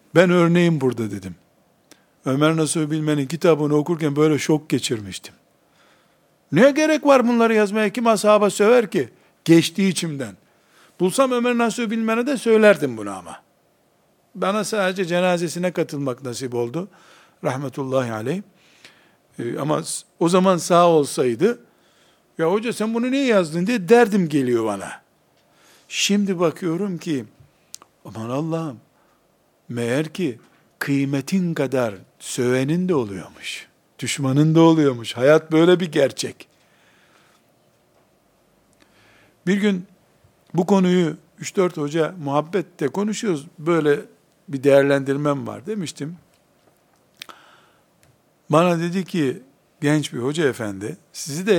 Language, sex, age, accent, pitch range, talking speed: Turkish, male, 60-79, native, 140-190 Hz, 110 wpm